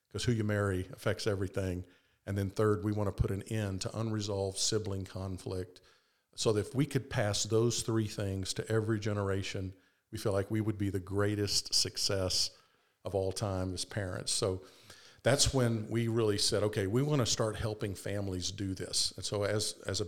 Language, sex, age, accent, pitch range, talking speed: English, male, 50-69, American, 95-110 Hz, 195 wpm